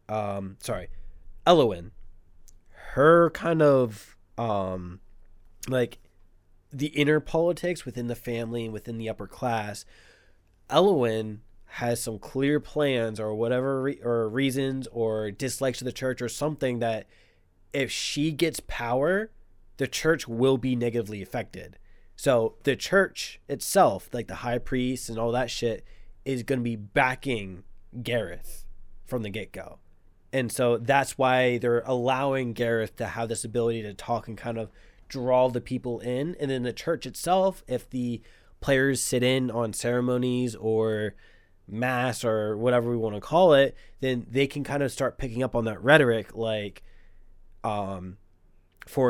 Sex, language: male, English